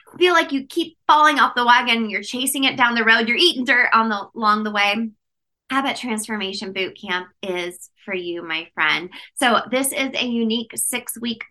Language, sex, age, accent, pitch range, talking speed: English, female, 20-39, American, 195-245 Hz, 195 wpm